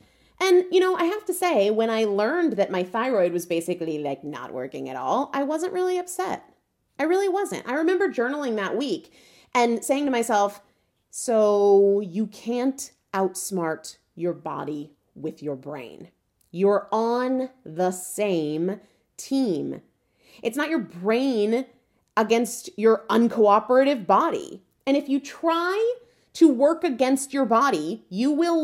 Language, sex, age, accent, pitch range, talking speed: English, female, 30-49, American, 205-345 Hz, 145 wpm